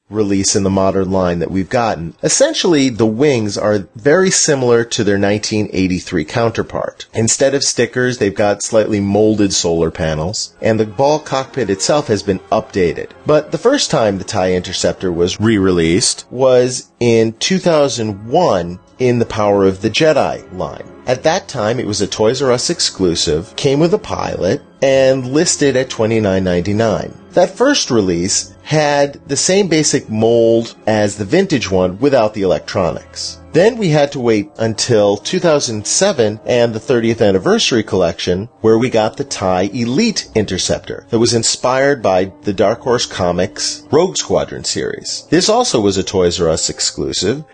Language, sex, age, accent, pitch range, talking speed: English, female, 30-49, American, 100-135 Hz, 160 wpm